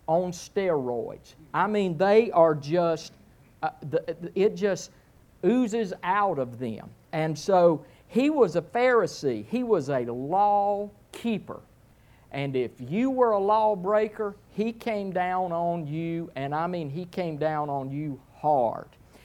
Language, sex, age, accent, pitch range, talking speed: English, male, 50-69, American, 150-215 Hz, 145 wpm